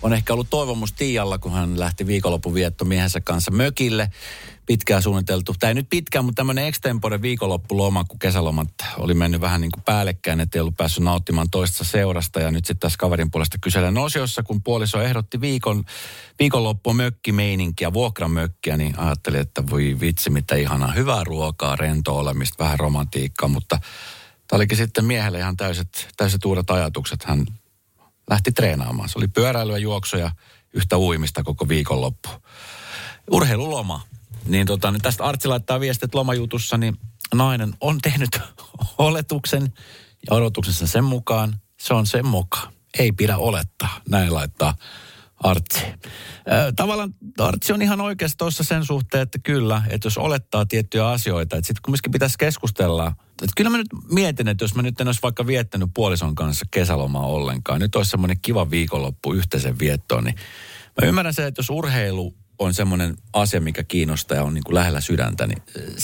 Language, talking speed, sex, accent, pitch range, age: Finnish, 155 wpm, male, native, 85-125 Hz, 40-59